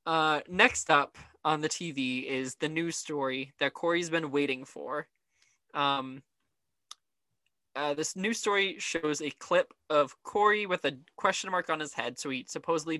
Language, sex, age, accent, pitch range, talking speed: English, male, 20-39, American, 130-170 Hz, 160 wpm